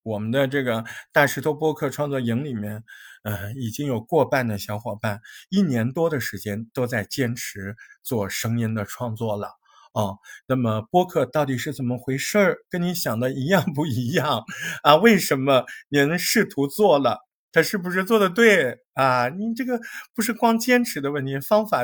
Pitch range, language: 120-175 Hz, Chinese